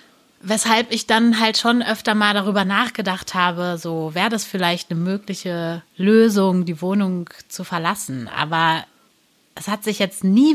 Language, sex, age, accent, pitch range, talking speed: German, female, 30-49, German, 195-245 Hz, 155 wpm